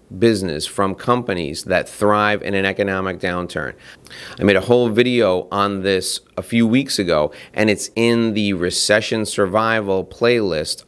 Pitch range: 95-115 Hz